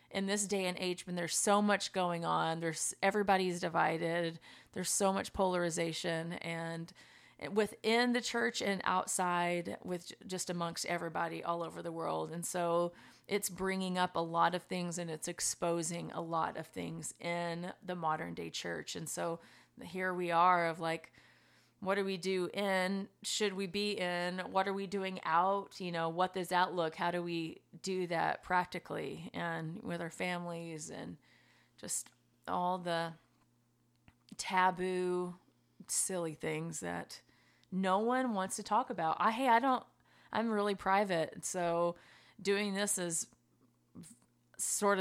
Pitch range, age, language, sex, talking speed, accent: 165-190 Hz, 30-49, English, female, 155 wpm, American